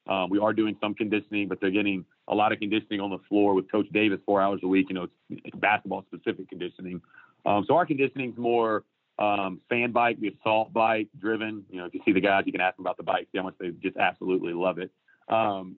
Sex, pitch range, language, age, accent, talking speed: male, 100-115 Hz, English, 30-49, American, 230 wpm